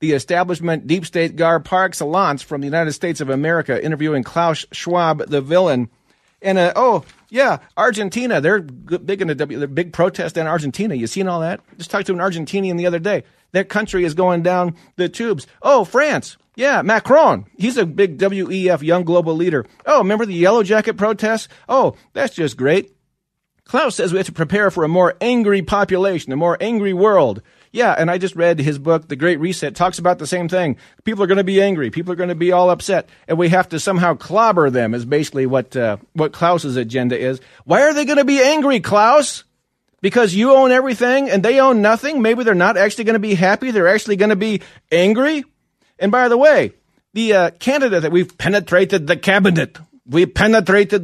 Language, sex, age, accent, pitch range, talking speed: English, male, 40-59, American, 165-210 Hz, 205 wpm